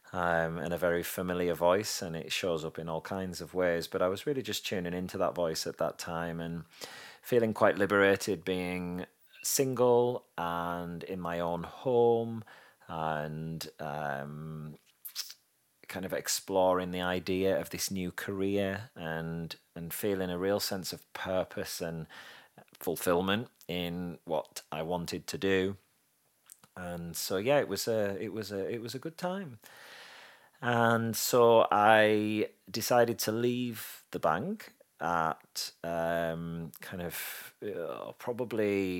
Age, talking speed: 30-49, 145 wpm